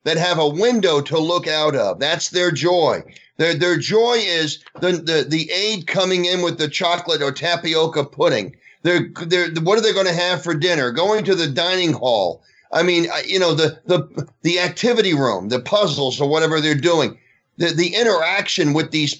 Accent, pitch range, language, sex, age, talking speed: American, 145-195 Hz, English, male, 40-59, 195 wpm